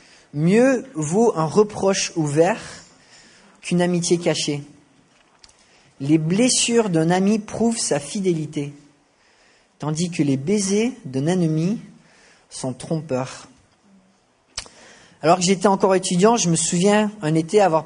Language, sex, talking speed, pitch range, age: English, male, 115 wpm, 150-190 Hz, 30-49